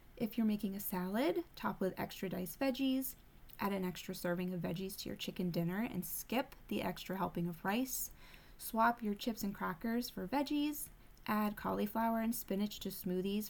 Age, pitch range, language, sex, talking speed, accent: 20-39, 185-235 Hz, English, female, 180 wpm, American